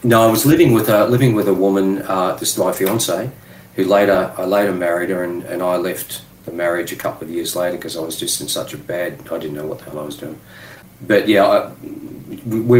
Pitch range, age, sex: 85-100 Hz, 40-59, male